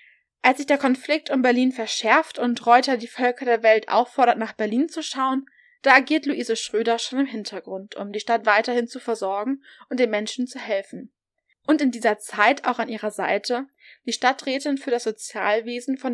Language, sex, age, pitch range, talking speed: German, female, 20-39, 225-260 Hz, 185 wpm